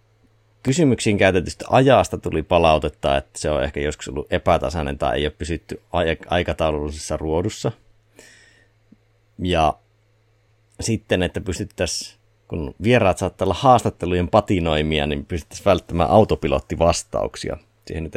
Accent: native